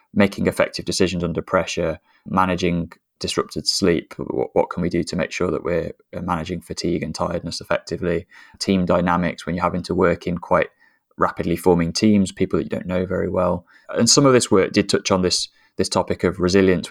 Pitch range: 85-95 Hz